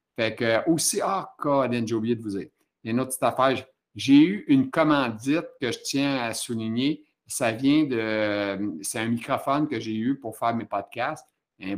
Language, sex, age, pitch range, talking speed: French, male, 60-79, 110-135 Hz, 195 wpm